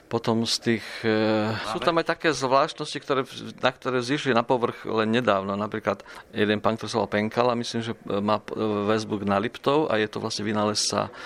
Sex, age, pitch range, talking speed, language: male, 40-59, 110-125 Hz, 175 wpm, Slovak